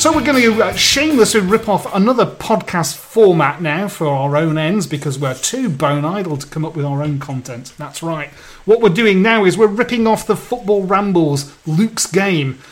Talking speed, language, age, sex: 200 wpm, English, 30-49, male